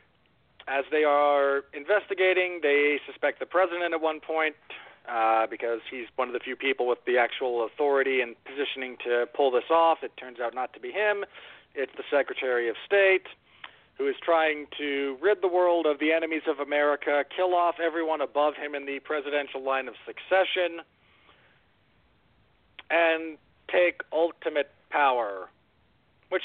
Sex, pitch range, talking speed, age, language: male, 130-175 Hz, 155 wpm, 40-59, English